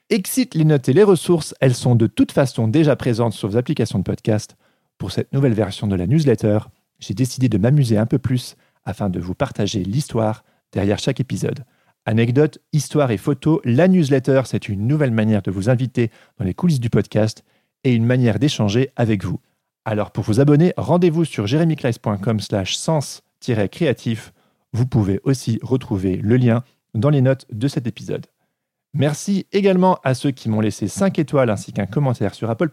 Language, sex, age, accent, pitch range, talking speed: French, male, 40-59, French, 110-155 Hz, 180 wpm